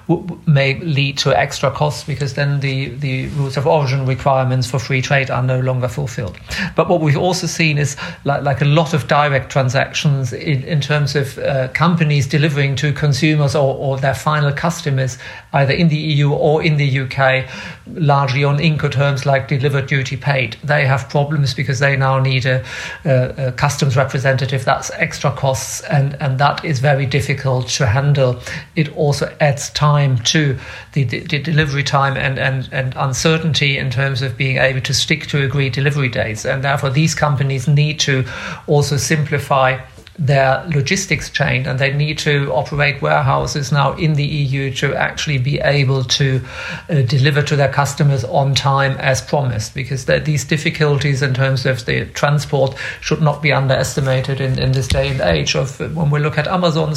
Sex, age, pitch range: male, 50-69, 135-150 Hz